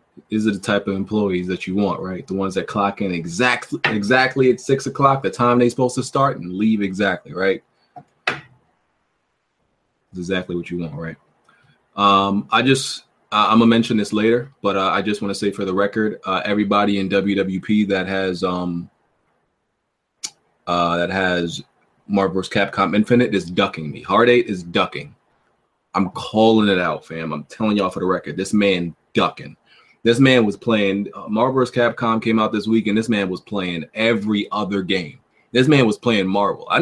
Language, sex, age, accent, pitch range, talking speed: English, male, 20-39, American, 95-120 Hz, 185 wpm